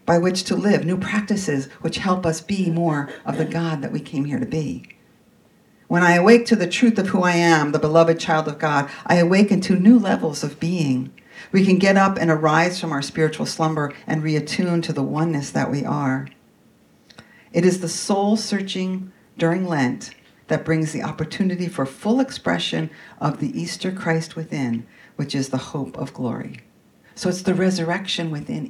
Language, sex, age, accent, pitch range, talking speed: English, female, 50-69, American, 150-190 Hz, 185 wpm